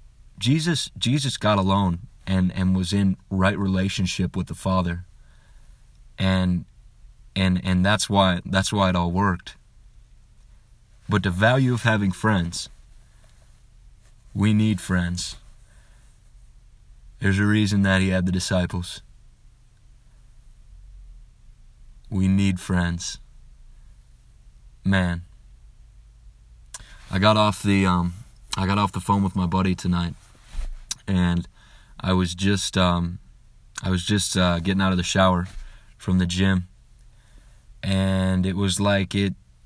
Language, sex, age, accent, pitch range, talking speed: English, male, 30-49, American, 95-110 Hz, 120 wpm